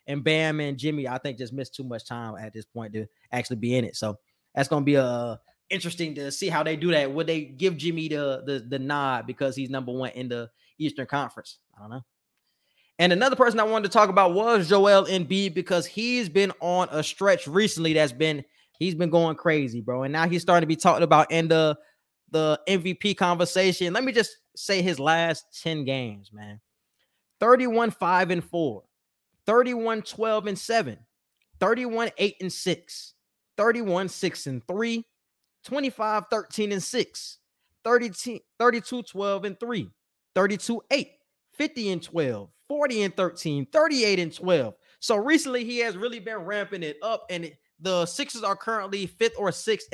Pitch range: 155-220 Hz